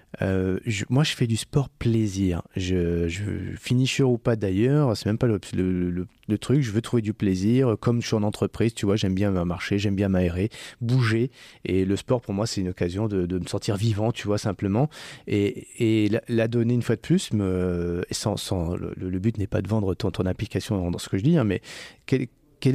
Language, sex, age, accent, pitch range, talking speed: French, male, 30-49, French, 100-125 Hz, 230 wpm